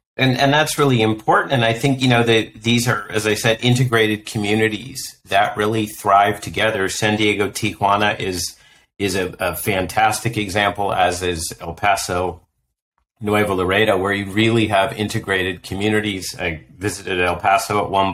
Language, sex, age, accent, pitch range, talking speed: English, male, 40-59, American, 95-120 Hz, 160 wpm